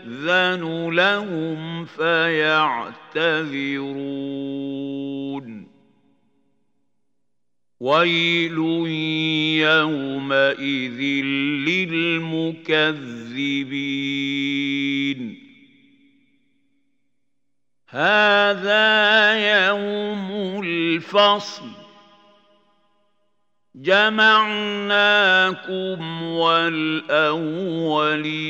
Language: Arabic